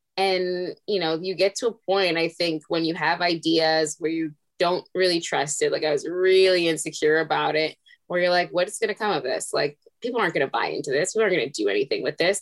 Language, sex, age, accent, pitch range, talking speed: English, female, 10-29, American, 160-215 Hz, 250 wpm